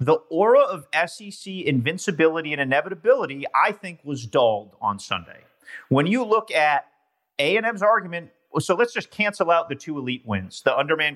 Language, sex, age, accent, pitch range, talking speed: English, male, 40-59, American, 135-200 Hz, 160 wpm